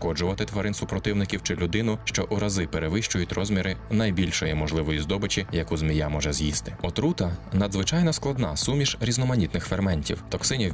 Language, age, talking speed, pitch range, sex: Ukrainian, 20-39, 135 wpm, 85-120 Hz, male